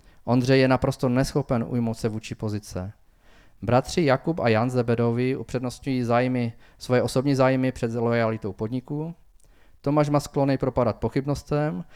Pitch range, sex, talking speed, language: 110-140 Hz, male, 130 wpm, Czech